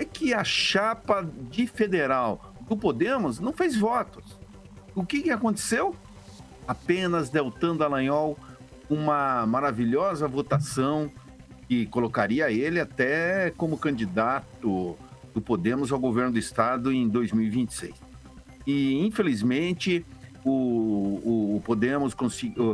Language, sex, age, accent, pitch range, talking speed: Portuguese, male, 60-79, Brazilian, 110-160 Hz, 110 wpm